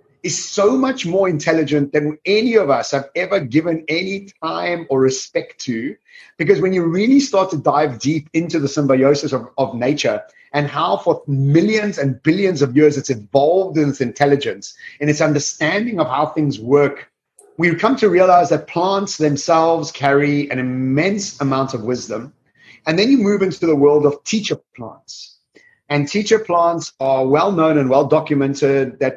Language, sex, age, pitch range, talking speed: English, male, 30-49, 135-165 Hz, 170 wpm